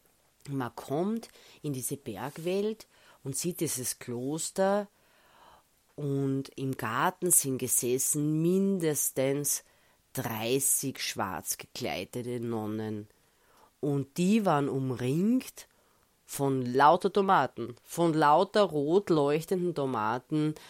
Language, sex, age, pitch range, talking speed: English, female, 30-49, 120-145 Hz, 90 wpm